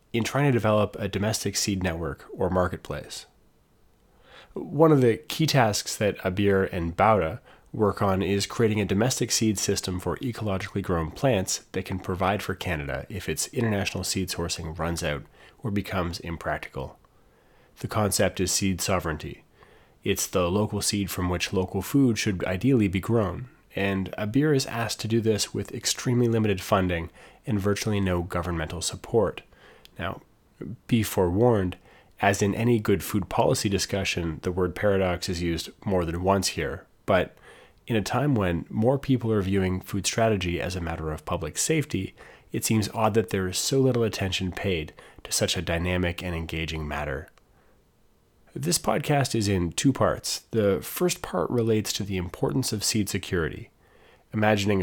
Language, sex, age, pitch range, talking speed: English, male, 30-49, 90-110 Hz, 165 wpm